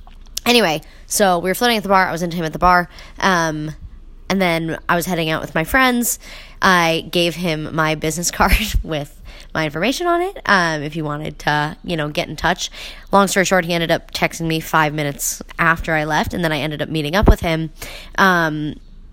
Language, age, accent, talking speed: English, 20-39, American, 215 wpm